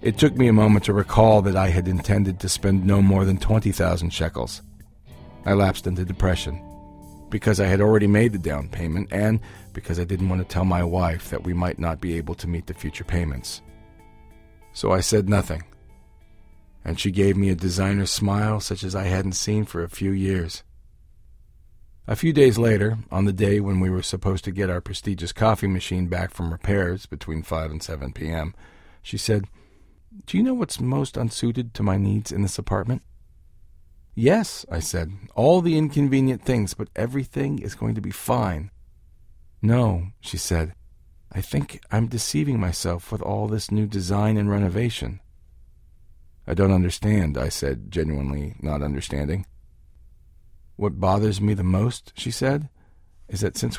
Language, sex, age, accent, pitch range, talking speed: English, male, 40-59, American, 85-105 Hz, 175 wpm